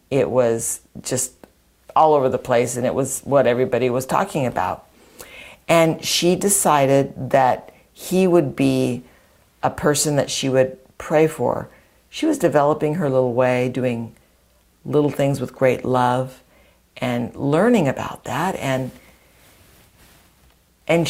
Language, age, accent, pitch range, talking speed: English, 60-79, American, 125-155 Hz, 135 wpm